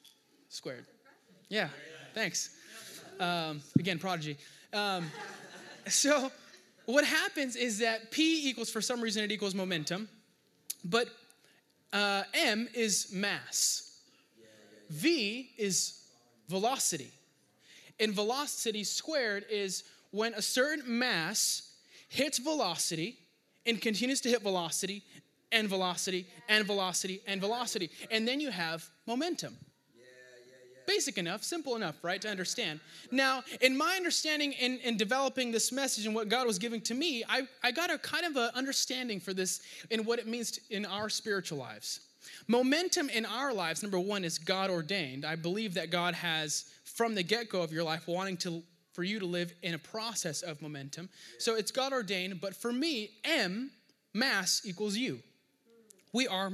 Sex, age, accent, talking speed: male, 20-39, American, 150 wpm